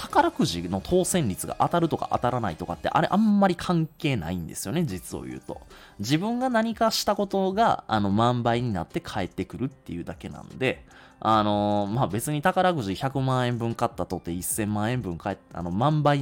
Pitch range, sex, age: 95-145 Hz, male, 20-39